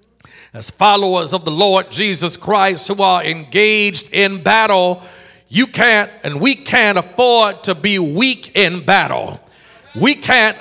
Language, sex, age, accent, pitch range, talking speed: English, male, 50-69, American, 195-240 Hz, 140 wpm